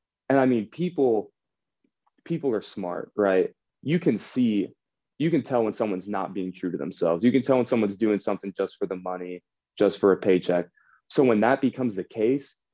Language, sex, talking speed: English, male, 200 wpm